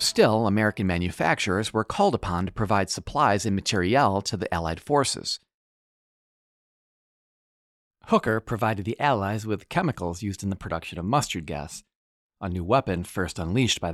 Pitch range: 90-115 Hz